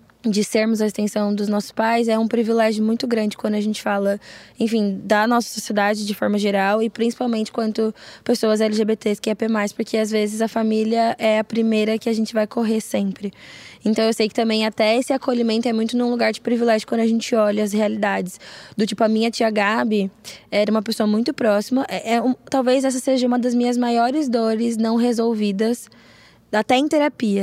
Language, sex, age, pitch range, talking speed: Portuguese, female, 10-29, 210-235 Hz, 200 wpm